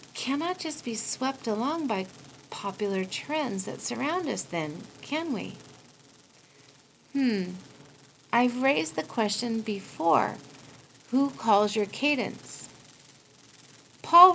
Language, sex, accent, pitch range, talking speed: English, female, American, 160-265 Hz, 105 wpm